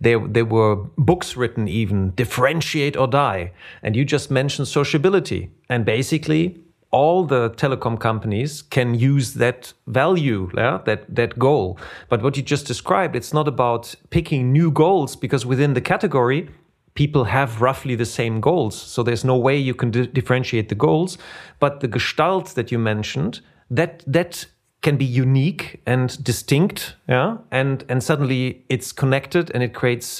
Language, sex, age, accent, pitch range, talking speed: German, male, 40-59, German, 115-140 Hz, 160 wpm